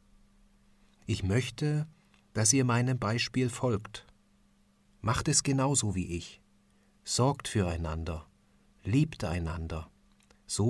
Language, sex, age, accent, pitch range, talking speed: German, male, 40-59, German, 95-115 Hz, 95 wpm